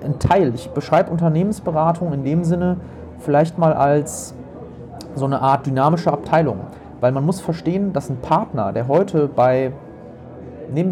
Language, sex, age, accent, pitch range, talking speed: German, male, 30-49, German, 135-170 Hz, 145 wpm